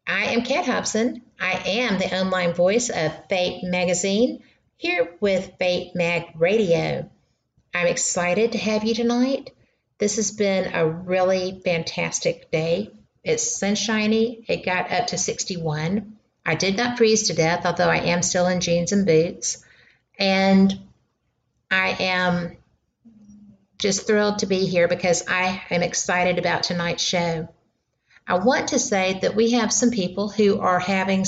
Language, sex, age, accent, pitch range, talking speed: English, female, 50-69, American, 175-215 Hz, 150 wpm